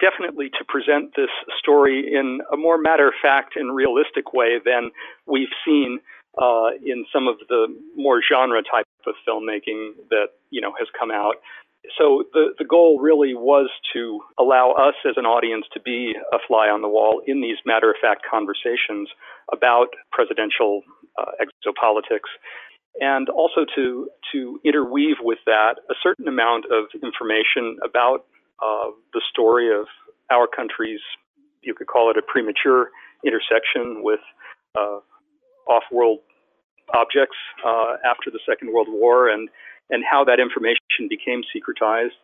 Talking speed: 145 wpm